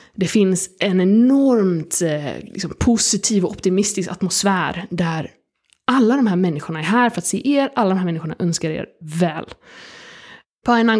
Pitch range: 185-235 Hz